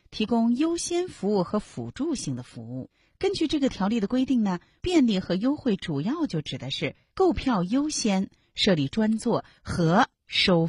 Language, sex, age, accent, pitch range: Chinese, female, 30-49, native, 155-245 Hz